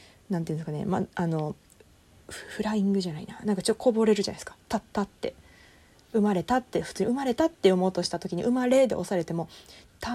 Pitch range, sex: 170-240 Hz, female